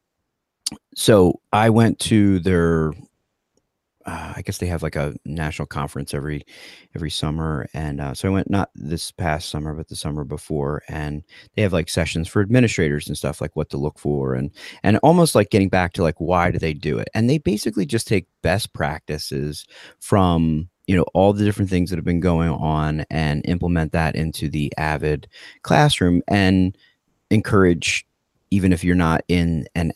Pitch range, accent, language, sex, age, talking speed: 75-90 Hz, American, English, male, 30-49, 180 wpm